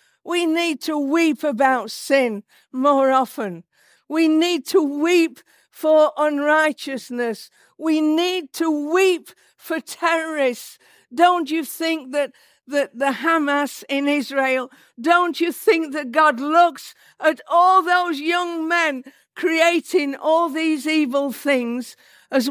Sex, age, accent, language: female, 50-69, British, English